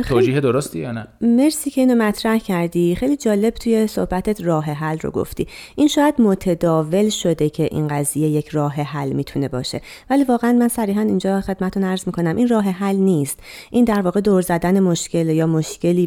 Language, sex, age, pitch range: Persian, female, 30-49, 155-220 Hz